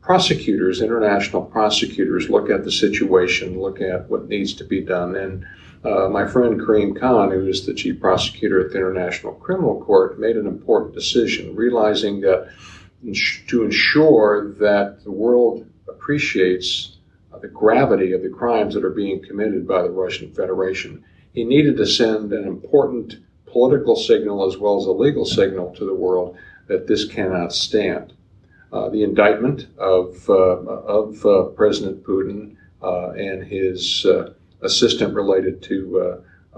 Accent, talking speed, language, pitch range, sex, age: American, 155 wpm, English, 90-135 Hz, male, 50-69